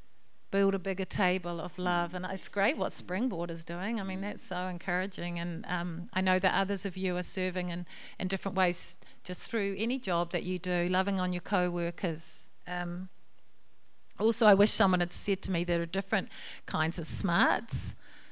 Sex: female